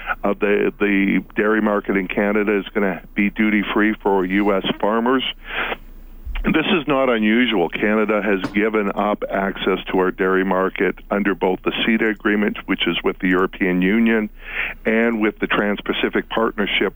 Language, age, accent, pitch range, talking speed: English, 50-69, American, 95-110 Hz, 155 wpm